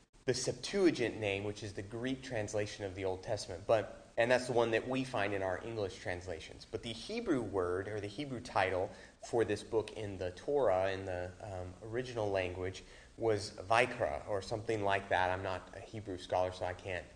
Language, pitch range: English, 100-125 Hz